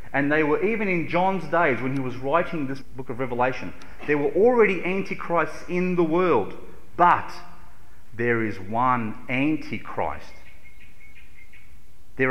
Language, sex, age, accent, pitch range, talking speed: English, male, 40-59, Australian, 110-160 Hz, 135 wpm